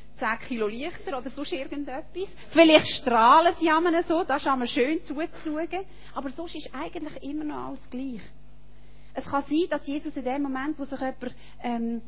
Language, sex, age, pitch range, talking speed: German, female, 30-49, 240-295 Hz, 190 wpm